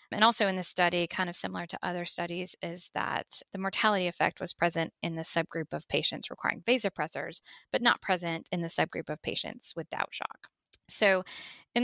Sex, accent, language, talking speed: female, American, English, 190 wpm